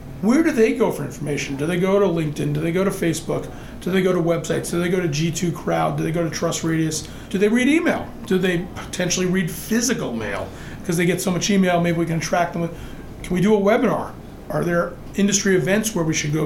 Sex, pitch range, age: male, 165-190 Hz, 40-59